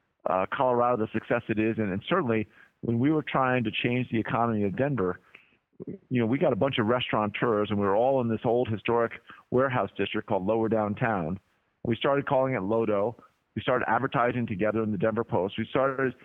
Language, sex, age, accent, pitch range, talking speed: English, male, 50-69, American, 110-125 Hz, 205 wpm